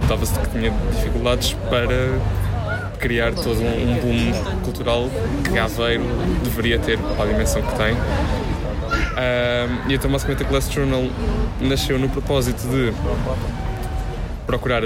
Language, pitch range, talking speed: Portuguese, 110-125 Hz, 120 wpm